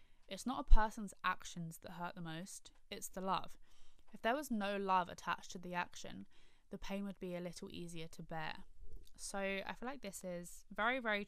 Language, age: English, 20-39